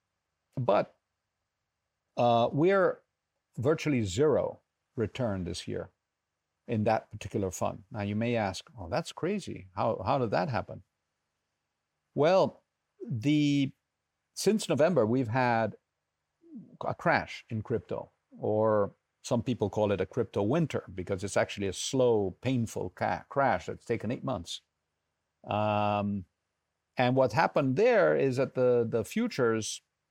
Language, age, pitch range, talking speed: English, 50-69, 100-130 Hz, 130 wpm